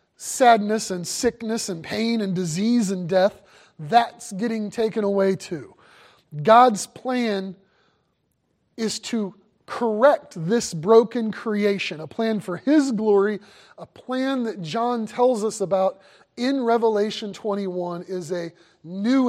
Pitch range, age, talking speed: 195-255 Hz, 30-49, 125 wpm